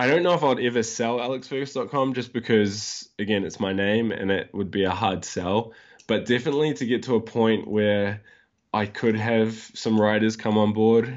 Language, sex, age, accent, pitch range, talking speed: English, male, 10-29, Australian, 95-110 Hz, 200 wpm